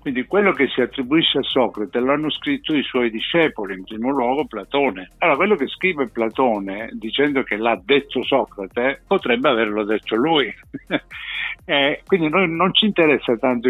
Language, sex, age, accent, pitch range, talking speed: Italian, male, 60-79, native, 120-165 Hz, 165 wpm